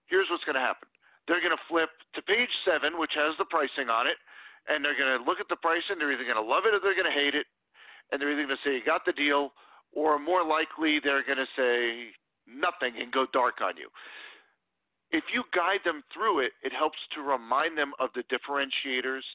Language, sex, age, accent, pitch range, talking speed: English, male, 40-59, American, 140-180 Hz, 235 wpm